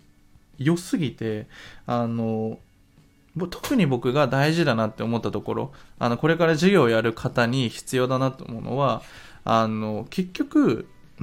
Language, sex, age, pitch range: Japanese, male, 20-39, 120-190 Hz